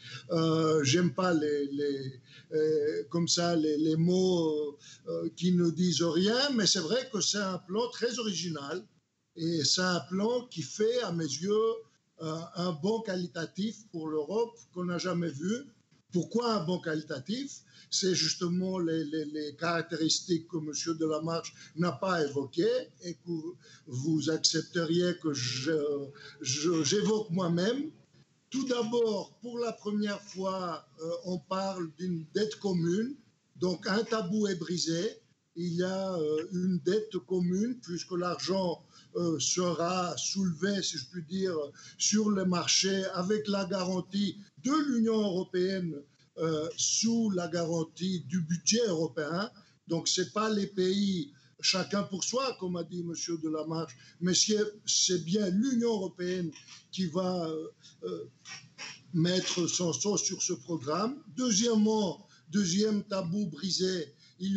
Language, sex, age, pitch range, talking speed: French, male, 60-79, 160-200 Hz, 140 wpm